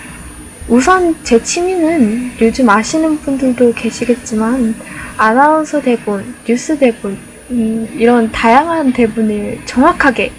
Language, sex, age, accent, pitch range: Korean, female, 10-29, native, 220-270 Hz